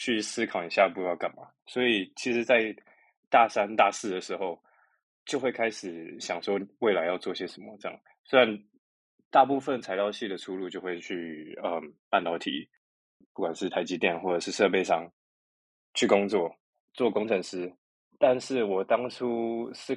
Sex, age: male, 20-39